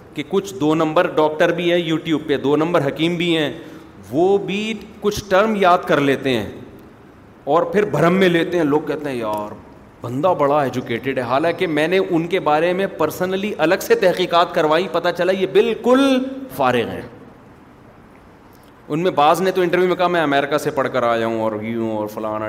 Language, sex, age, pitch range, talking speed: Urdu, male, 30-49, 125-170 Hz, 195 wpm